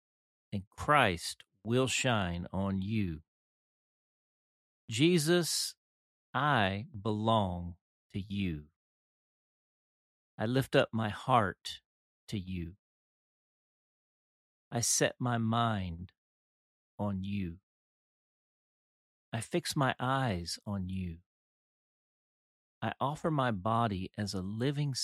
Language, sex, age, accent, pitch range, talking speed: English, male, 40-59, American, 90-120 Hz, 85 wpm